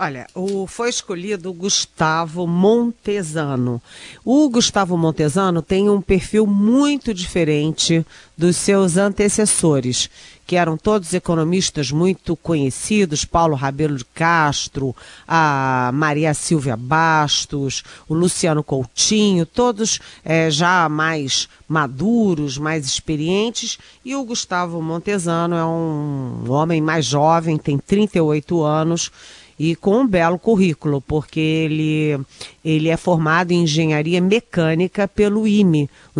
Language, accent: Portuguese, Brazilian